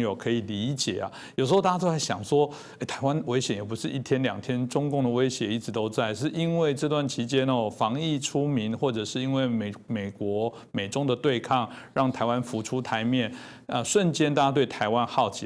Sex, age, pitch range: male, 50-69, 115-135 Hz